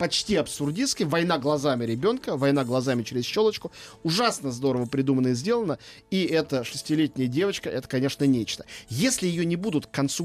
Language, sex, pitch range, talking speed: Russian, male, 135-175 Hz, 160 wpm